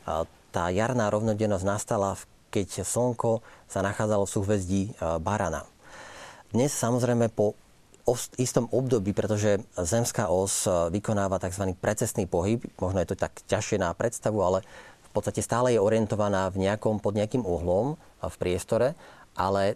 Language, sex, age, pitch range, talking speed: Slovak, male, 40-59, 100-120 Hz, 135 wpm